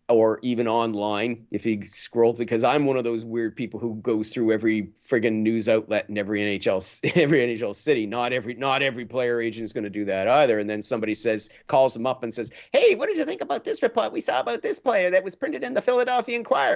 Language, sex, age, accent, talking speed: English, male, 50-69, American, 240 wpm